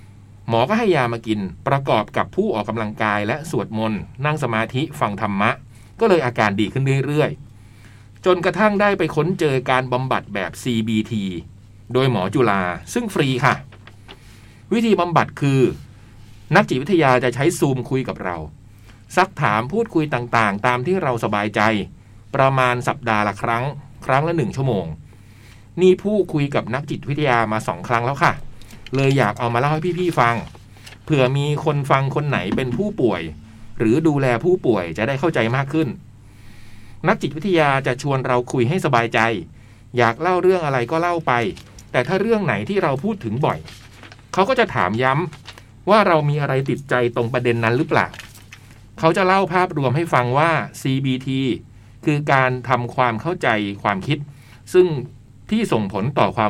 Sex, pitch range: male, 110-155 Hz